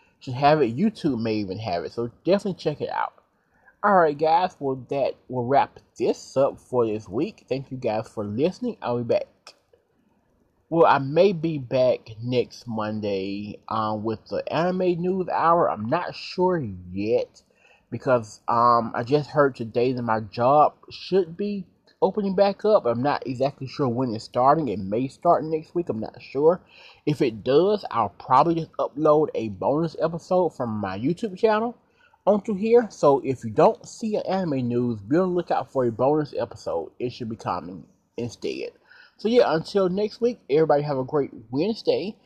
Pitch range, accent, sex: 120-195 Hz, American, male